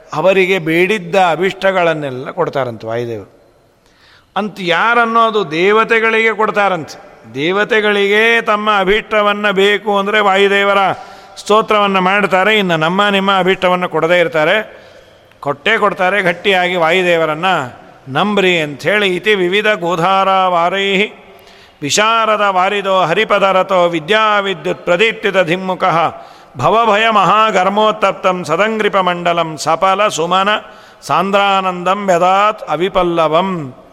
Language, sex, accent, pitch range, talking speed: Kannada, male, native, 165-205 Hz, 85 wpm